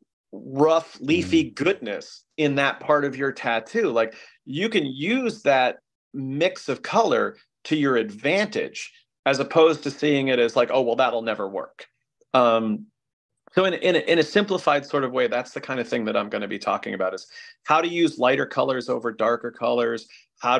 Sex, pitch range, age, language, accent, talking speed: male, 110-140 Hz, 30-49, English, American, 190 wpm